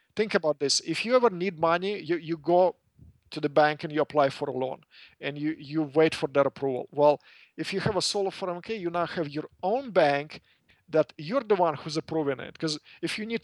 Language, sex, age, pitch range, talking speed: English, male, 50-69, 150-180 Hz, 230 wpm